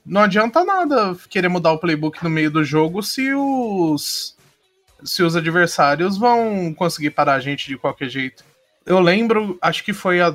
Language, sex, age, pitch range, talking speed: Portuguese, male, 20-39, 155-225 Hz, 175 wpm